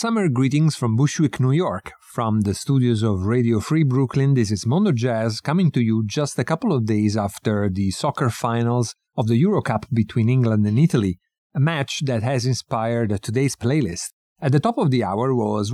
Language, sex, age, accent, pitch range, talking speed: English, male, 40-59, Italian, 110-135 Hz, 195 wpm